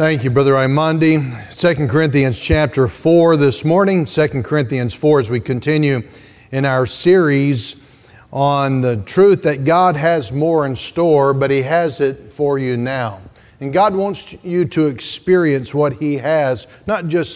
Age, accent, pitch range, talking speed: 40-59, American, 130-160 Hz, 160 wpm